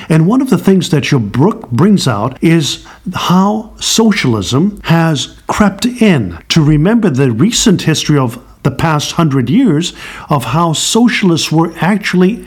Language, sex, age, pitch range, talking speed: English, male, 50-69, 140-190 Hz, 150 wpm